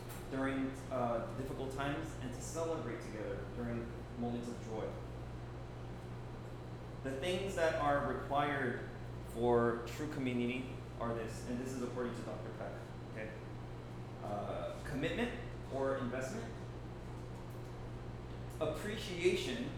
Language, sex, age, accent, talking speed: English, male, 30-49, American, 105 wpm